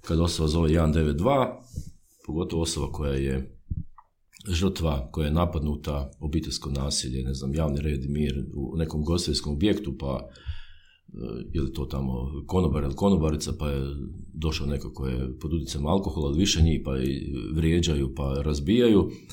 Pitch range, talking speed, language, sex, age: 75-90 Hz, 145 wpm, Croatian, male, 50-69